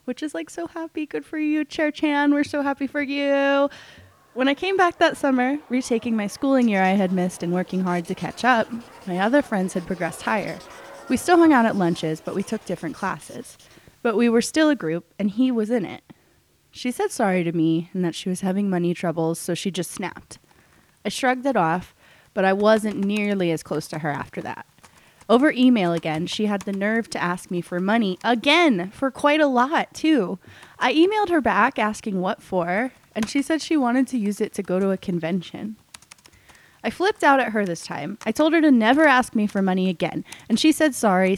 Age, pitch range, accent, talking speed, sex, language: 20-39, 180-270 Hz, American, 220 wpm, female, English